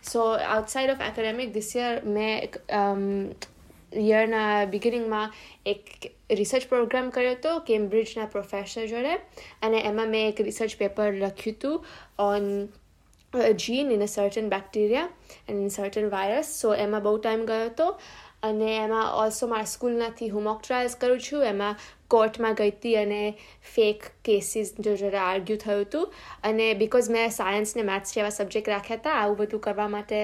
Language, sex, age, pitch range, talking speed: Gujarati, female, 20-39, 200-225 Hz, 150 wpm